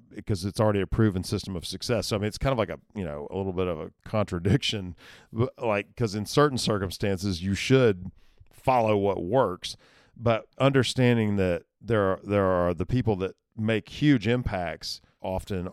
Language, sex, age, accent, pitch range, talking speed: English, male, 40-59, American, 90-115 Hz, 185 wpm